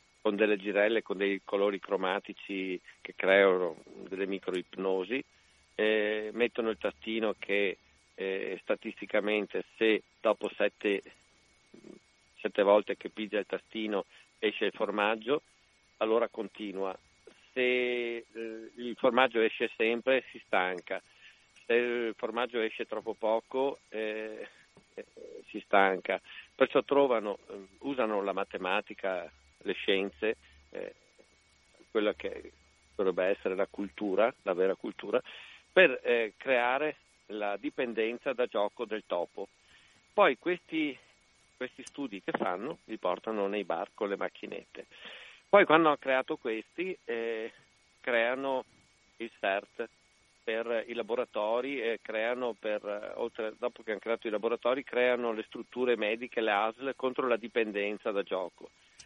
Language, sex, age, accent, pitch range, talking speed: Italian, male, 50-69, native, 100-130 Hz, 125 wpm